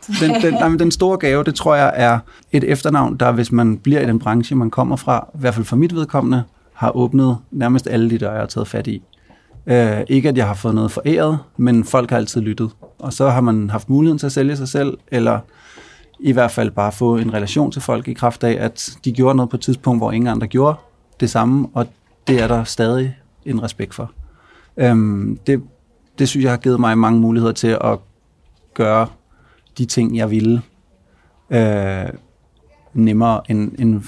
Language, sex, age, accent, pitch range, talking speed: Danish, male, 30-49, native, 110-135 Hz, 205 wpm